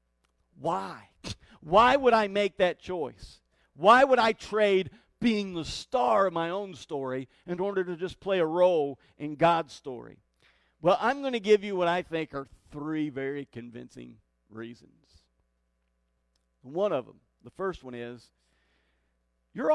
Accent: American